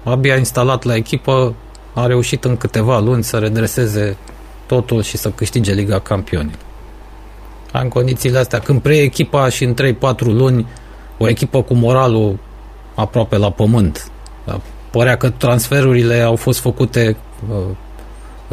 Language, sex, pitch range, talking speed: Romanian, male, 100-125 Hz, 135 wpm